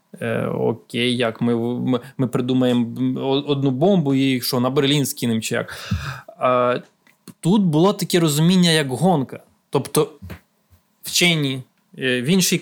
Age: 20-39